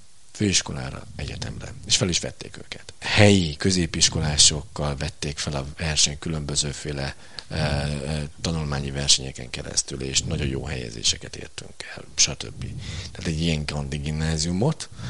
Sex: male